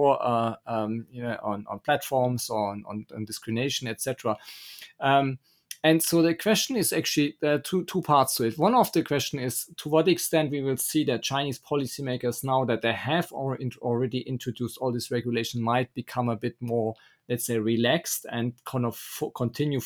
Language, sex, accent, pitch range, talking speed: English, male, German, 120-155 Hz, 200 wpm